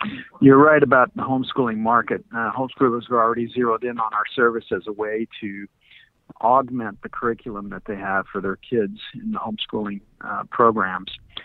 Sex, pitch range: male, 105-130 Hz